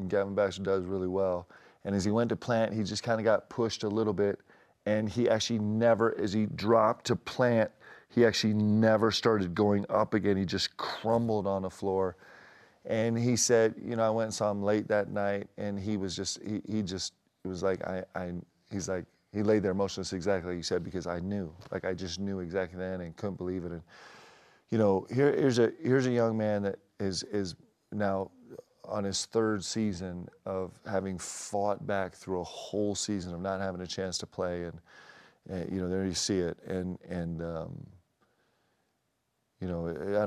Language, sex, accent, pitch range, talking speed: English, male, American, 90-105 Hz, 205 wpm